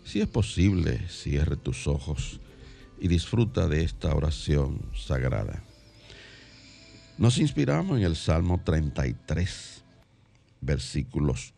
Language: Spanish